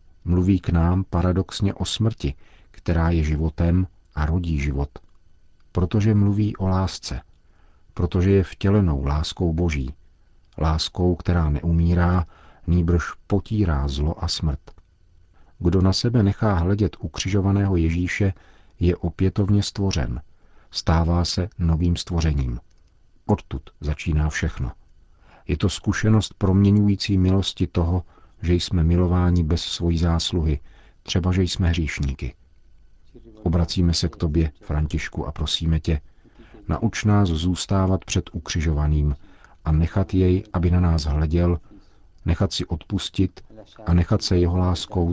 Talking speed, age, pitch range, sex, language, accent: 120 wpm, 50-69, 80-95 Hz, male, Czech, native